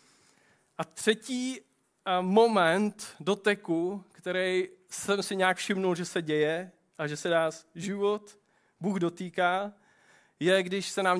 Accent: native